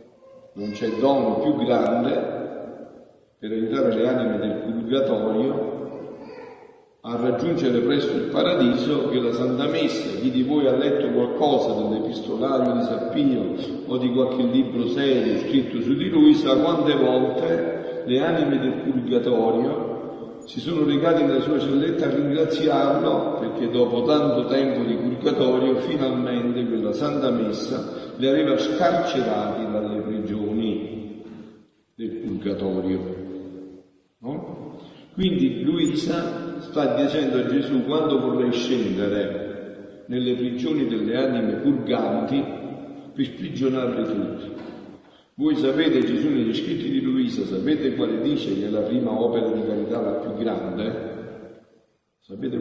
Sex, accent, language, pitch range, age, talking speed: male, native, Italian, 105-150 Hz, 50-69, 120 wpm